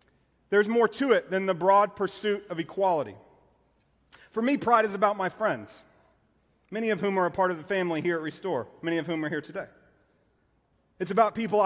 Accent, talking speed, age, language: American, 195 wpm, 40-59, English